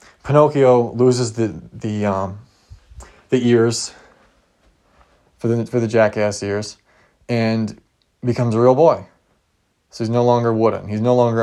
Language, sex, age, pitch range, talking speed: English, male, 20-39, 105-125 Hz, 135 wpm